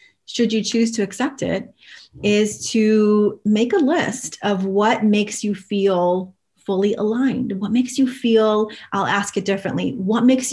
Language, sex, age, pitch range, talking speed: English, female, 30-49, 195-225 Hz, 160 wpm